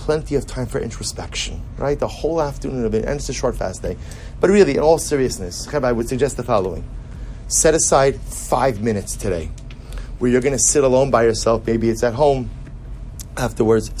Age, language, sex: 30-49, English, male